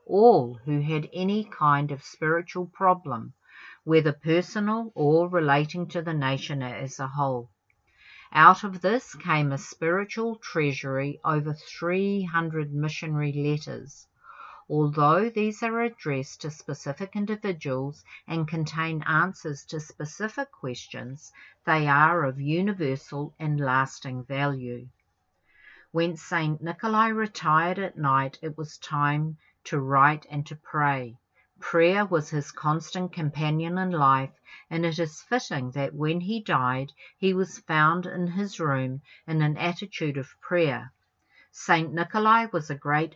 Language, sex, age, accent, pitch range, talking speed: English, female, 50-69, Australian, 145-180 Hz, 130 wpm